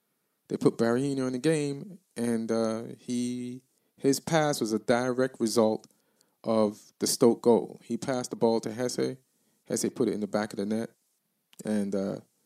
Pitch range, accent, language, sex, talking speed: 110-135 Hz, American, English, male, 175 wpm